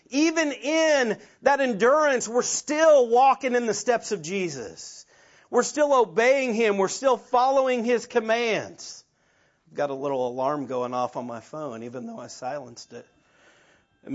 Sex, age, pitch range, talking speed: male, 40-59, 170-250 Hz, 155 wpm